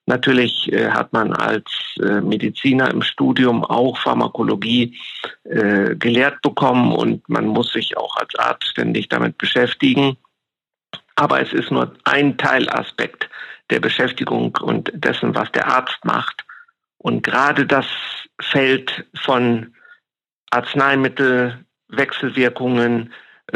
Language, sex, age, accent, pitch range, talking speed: German, male, 50-69, German, 125-155 Hz, 105 wpm